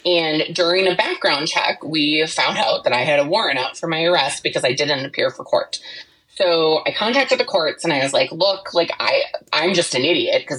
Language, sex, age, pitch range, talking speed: English, female, 20-39, 170-290 Hz, 225 wpm